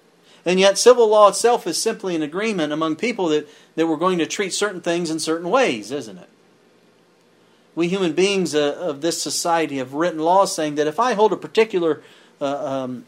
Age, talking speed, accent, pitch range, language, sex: 40-59, 195 wpm, American, 140-185 Hz, English, male